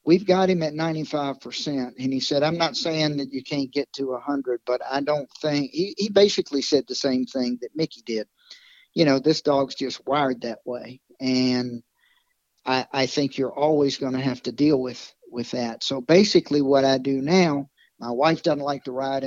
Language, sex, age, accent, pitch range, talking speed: English, male, 50-69, American, 130-150 Hz, 205 wpm